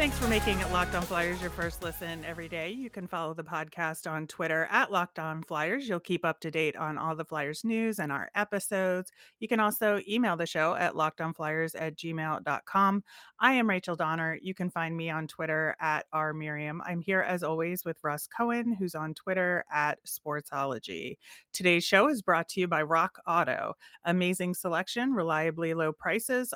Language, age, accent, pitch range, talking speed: English, 30-49, American, 160-190 Hz, 195 wpm